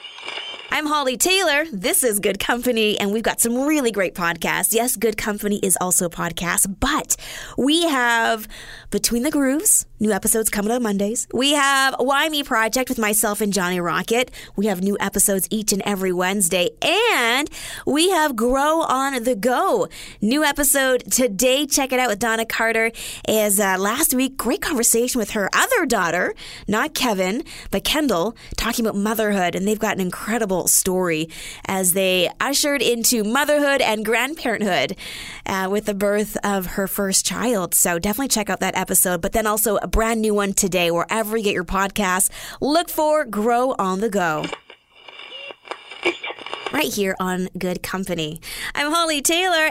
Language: English